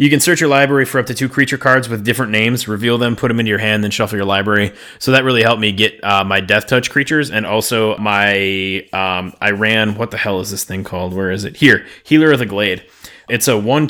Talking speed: 260 wpm